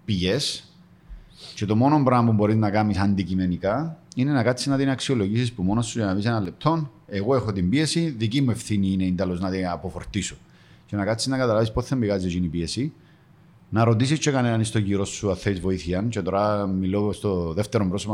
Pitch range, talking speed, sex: 95-125 Hz, 200 wpm, male